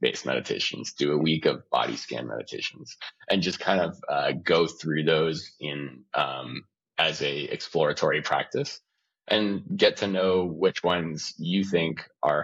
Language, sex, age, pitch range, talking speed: English, male, 20-39, 75-90 Hz, 155 wpm